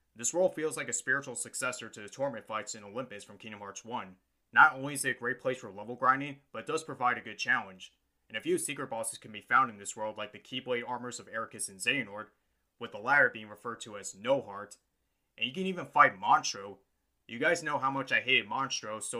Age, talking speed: 20-39, 240 wpm